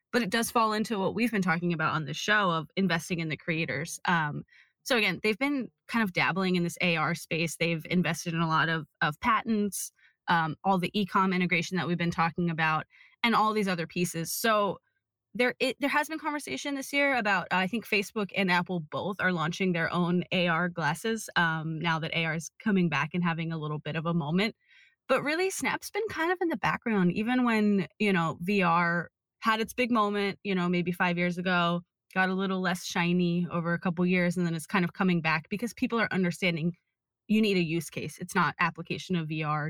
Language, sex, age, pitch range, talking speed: English, female, 20-39, 165-205 Hz, 220 wpm